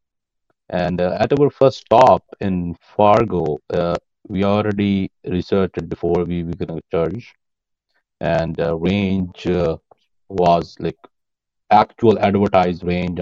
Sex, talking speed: male, 125 wpm